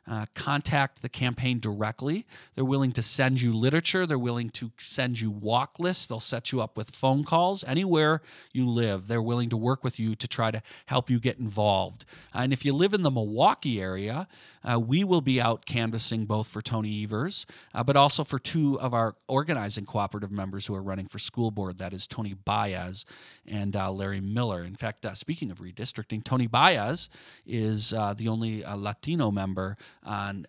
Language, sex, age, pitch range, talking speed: English, male, 40-59, 105-130 Hz, 195 wpm